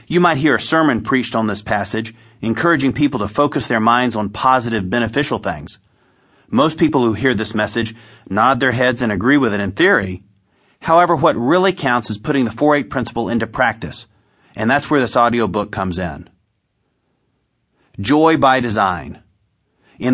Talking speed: 165 wpm